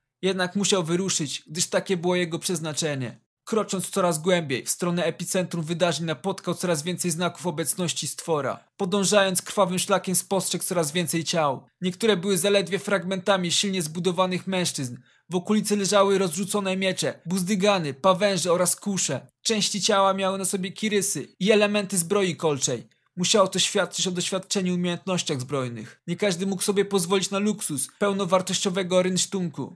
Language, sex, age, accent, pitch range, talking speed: Polish, male, 20-39, native, 160-195 Hz, 140 wpm